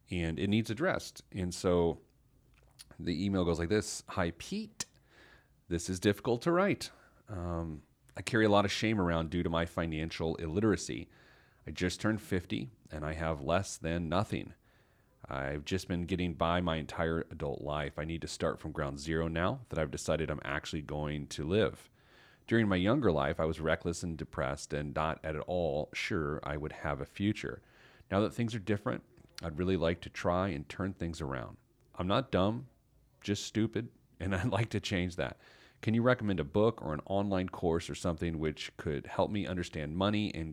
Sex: male